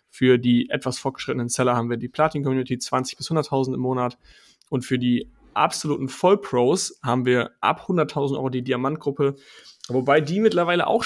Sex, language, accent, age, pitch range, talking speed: male, German, German, 30-49, 125-145 Hz, 165 wpm